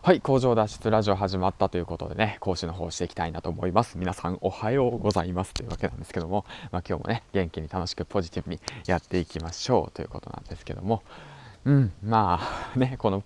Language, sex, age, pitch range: Japanese, male, 20-39, 90-110 Hz